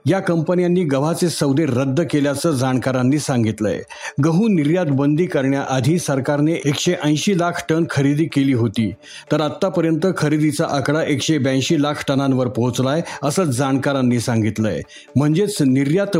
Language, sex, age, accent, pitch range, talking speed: Marathi, male, 50-69, native, 130-165 Hz, 120 wpm